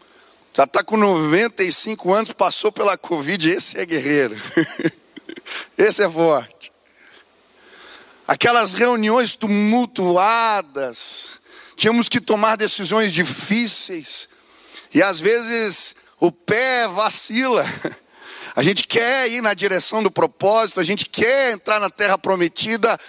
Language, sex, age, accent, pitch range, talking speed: Portuguese, male, 40-59, Brazilian, 180-230 Hz, 110 wpm